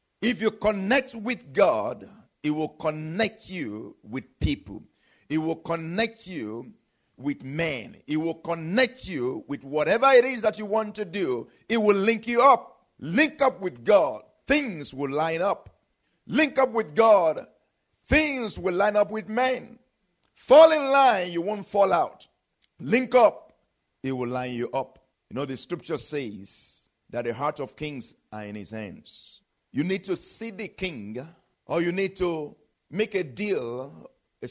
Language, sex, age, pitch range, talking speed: English, male, 50-69, 150-225 Hz, 165 wpm